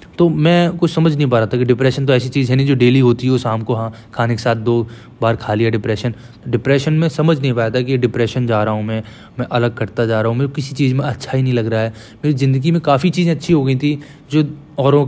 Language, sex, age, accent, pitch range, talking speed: Hindi, male, 20-39, native, 120-145 Hz, 280 wpm